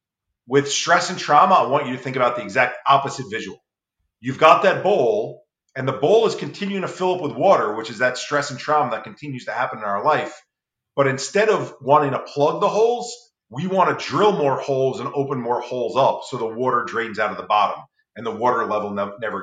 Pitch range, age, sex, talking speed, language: 120-175 Hz, 40-59, male, 225 wpm, English